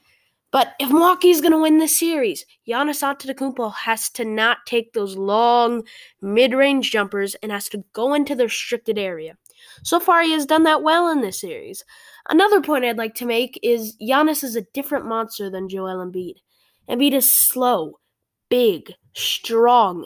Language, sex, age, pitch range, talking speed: English, female, 10-29, 220-280 Hz, 170 wpm